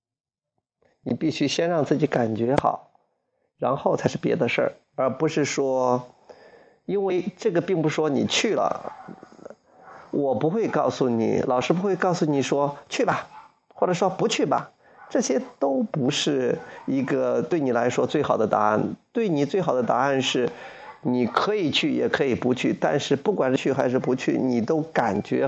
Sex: male